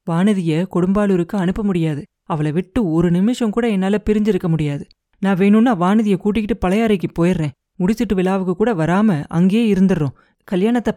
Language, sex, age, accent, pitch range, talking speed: Tamil, female, 30-49, native, 170-220 Hz, 135 wpm